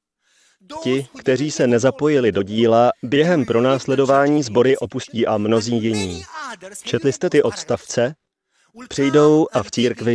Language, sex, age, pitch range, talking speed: Slovak, male, 30-49, 110-145 Hz, 125 wpm